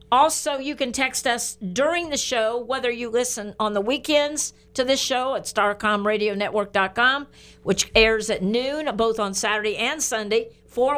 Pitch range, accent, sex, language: 215-265 Hz, American, female, English